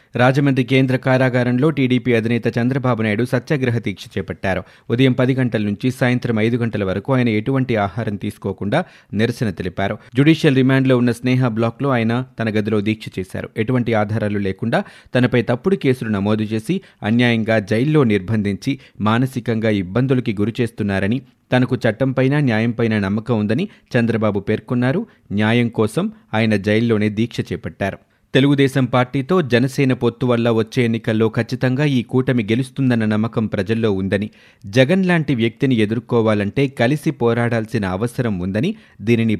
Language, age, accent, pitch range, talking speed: Telugu, 30-49, native, 105-125 Hz, 130 wpm